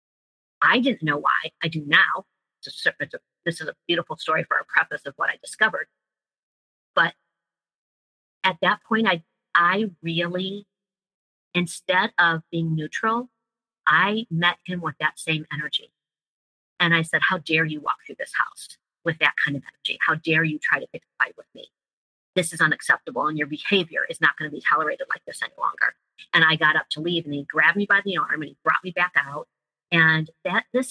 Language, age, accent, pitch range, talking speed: English, 40-59, American, 150-180 Hz, 200 wpm